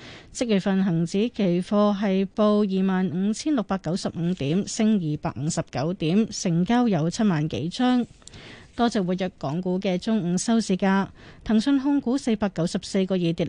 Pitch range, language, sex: 180-225 Hz, Chinese, female